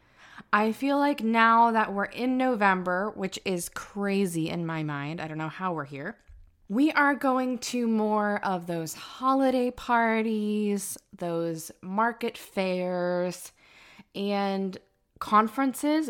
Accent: American